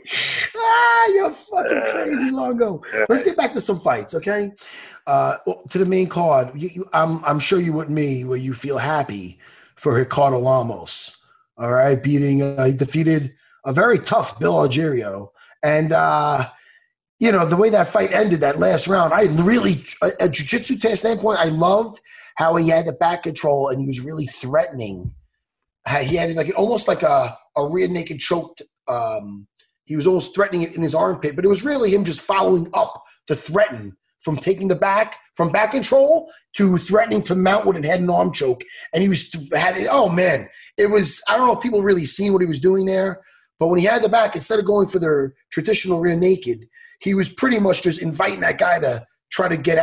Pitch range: 150-215 Hz